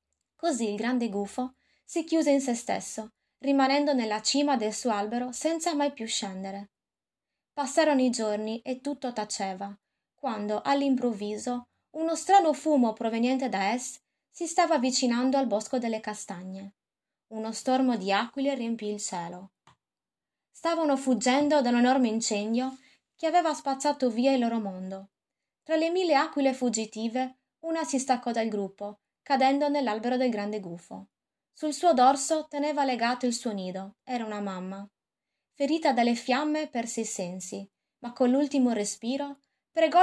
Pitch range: 220-285 Hz